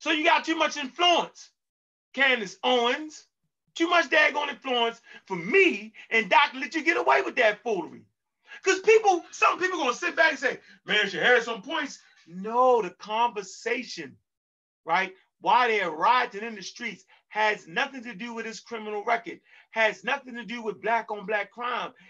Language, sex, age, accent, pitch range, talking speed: English, male, 30-49, American, 230-325 Hz, 180 wpm